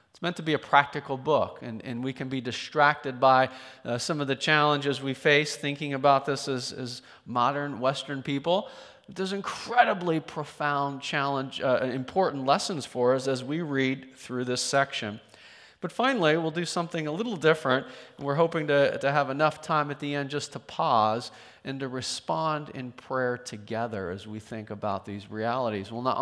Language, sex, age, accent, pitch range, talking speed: English, male, 40-59, American, 125-150 Hz, 185 wpm